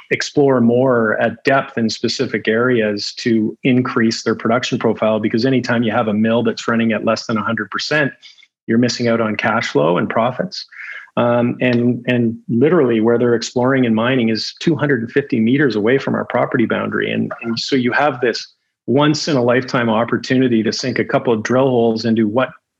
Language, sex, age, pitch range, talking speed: English, male, 40-59, 115-130 Hz, 180 wpm